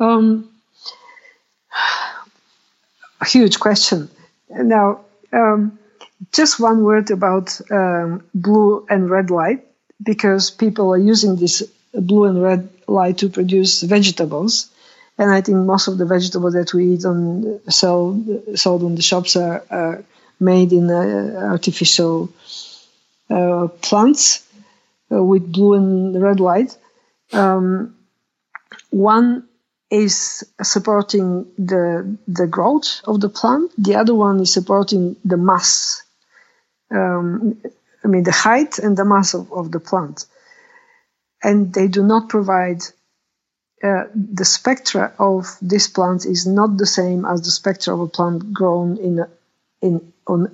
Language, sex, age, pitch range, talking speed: German, female, 50-69, 180-215 Hz, 130 wpm